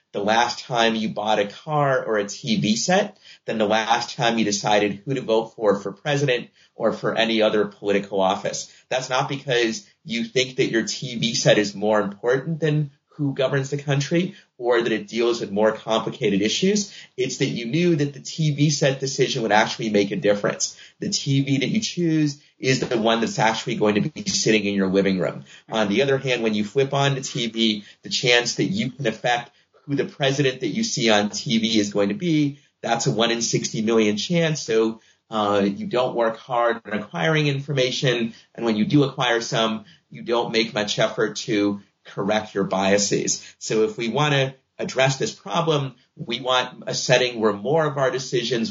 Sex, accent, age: male, American, 30-49